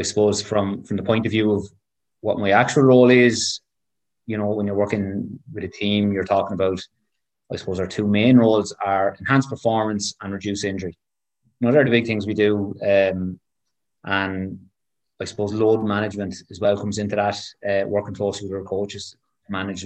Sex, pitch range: male, 95-105 Hz